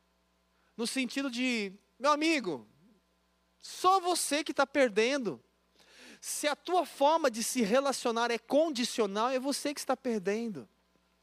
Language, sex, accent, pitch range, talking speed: Portuguese, male, Brazilian, 190-265 Hz, 130 wpm